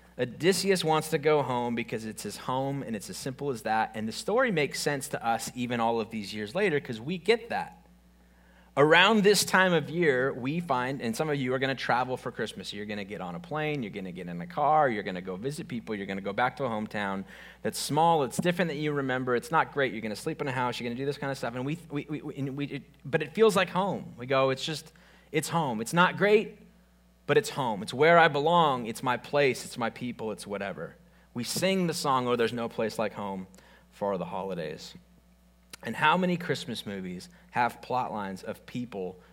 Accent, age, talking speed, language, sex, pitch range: American, 30-49, 240 wpm, English, male, 110-165 Hz